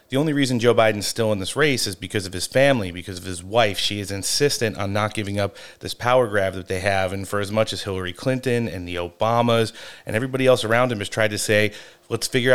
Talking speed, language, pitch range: 250 wpm, English, 105-130 Hz